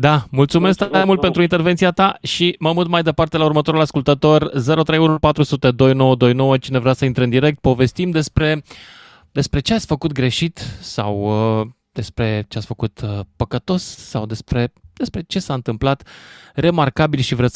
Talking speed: 150 wpm